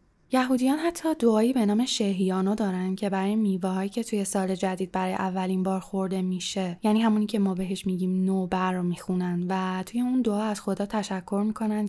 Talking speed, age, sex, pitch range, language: 185 wpm, 10-29, female, 190-225 Hz, Persian